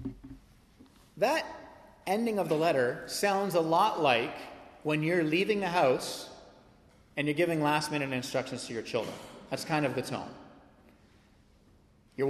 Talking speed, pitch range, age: 135 wpm, 135-225 Hz, 30-49